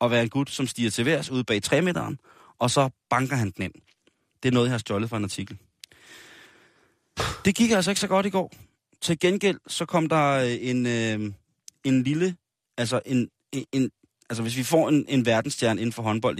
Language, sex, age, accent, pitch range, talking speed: Danish, male, 30-49, native, 105-130 Hz, 200 wpm